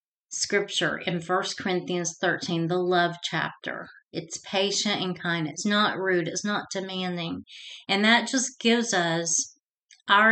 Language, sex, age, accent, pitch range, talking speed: English, female, 30-49, American, 180-220 Hz, 140 wpm